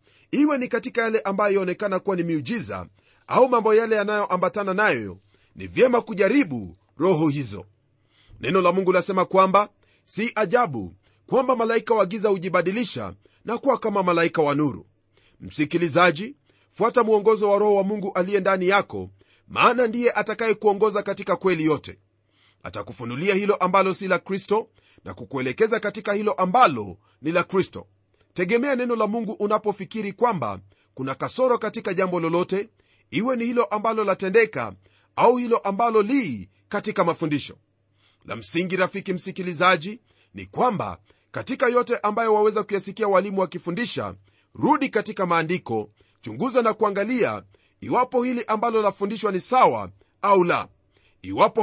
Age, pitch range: 40-59, 145-220 Hz